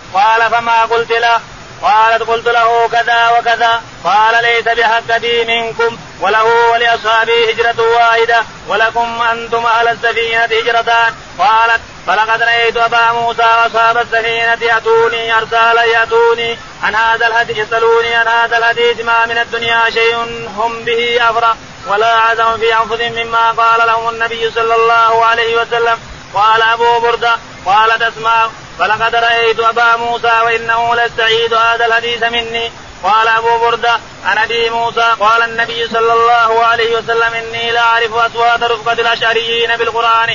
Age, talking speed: 30-49, 135 wpm